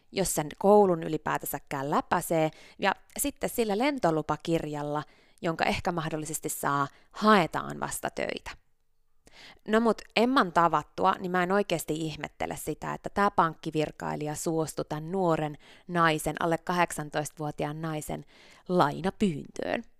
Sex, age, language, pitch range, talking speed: female, 20-39, Finnish, 155-210 Hz, 110 wpm